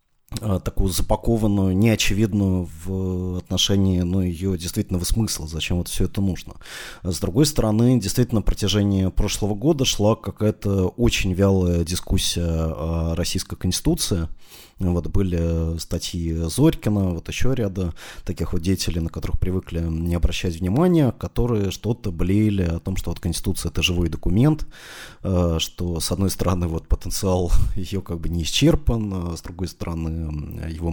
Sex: male